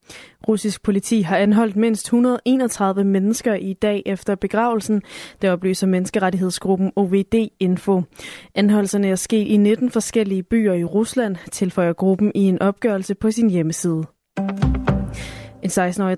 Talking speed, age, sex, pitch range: 120 wpm, 20-39, female, 185-215 Hz